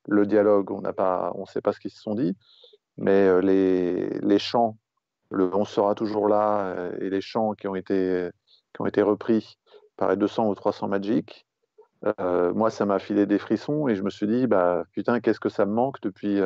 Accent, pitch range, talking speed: French, 100-115 Hz, 205 wpm